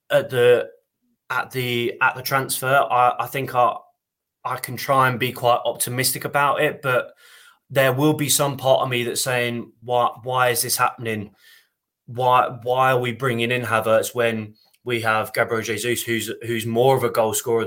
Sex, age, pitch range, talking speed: male, 20-39, 115-135 Hz, 185 wpm